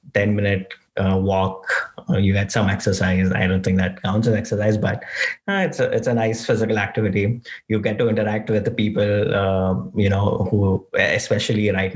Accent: Indian